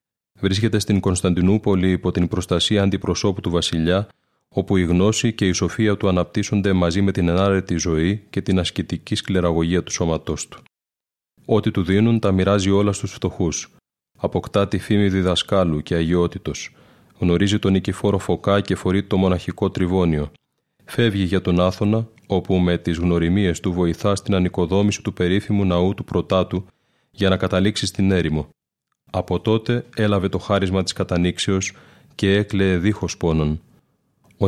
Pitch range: 90-100 Hz